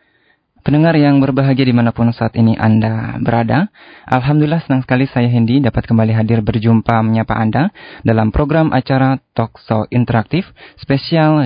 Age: 20-39